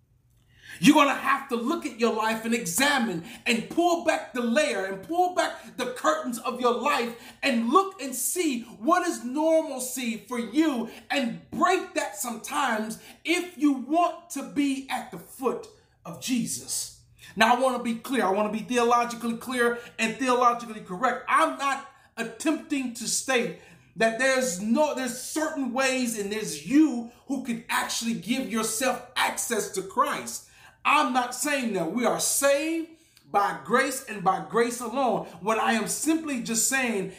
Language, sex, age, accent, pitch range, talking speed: English, male, 30-49, American, 230-310 Hz, 165 wpm